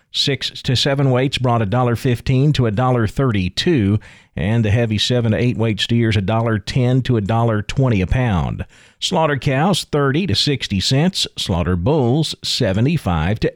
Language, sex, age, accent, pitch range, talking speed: English, male, 40-59, American, 110-145 Hz, 175 wpm